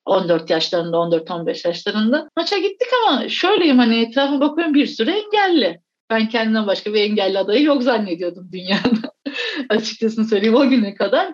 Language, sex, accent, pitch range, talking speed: Turkish, female, native, 195-255 Hz, 150 wpm